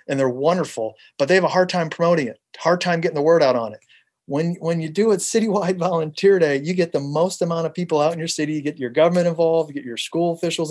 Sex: male